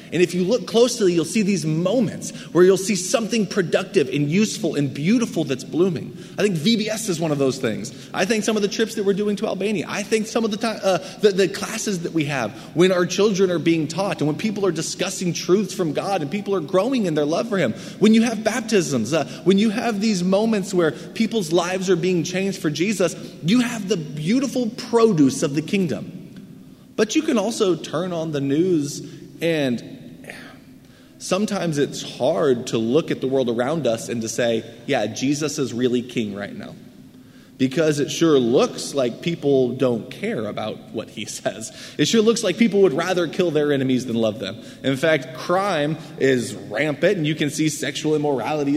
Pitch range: 150-205 Hz